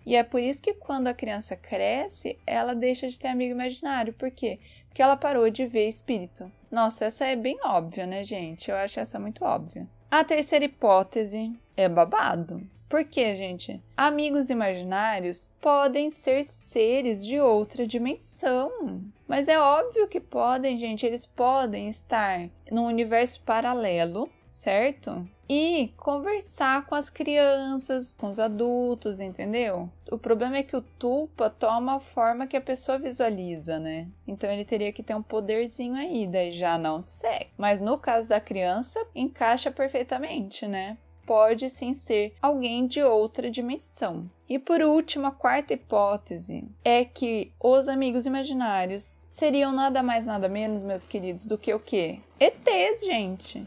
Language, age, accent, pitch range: Portuguese, 10-29, Brazilian, 210-270 Hz